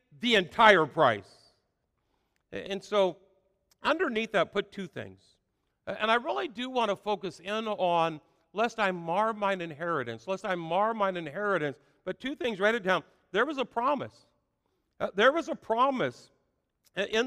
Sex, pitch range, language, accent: male, 175-235 Hz, English, American